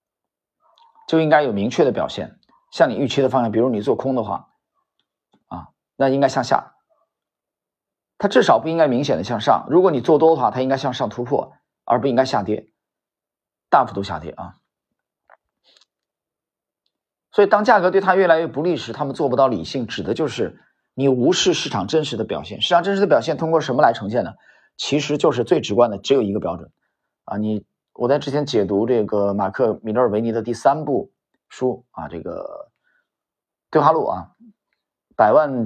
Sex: male